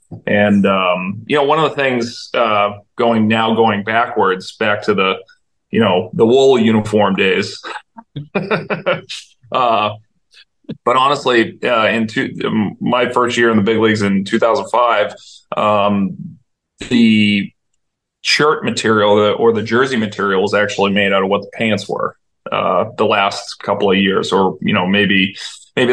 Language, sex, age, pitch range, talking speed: English, male, 30-49, 100-115 Hz, 150 wpm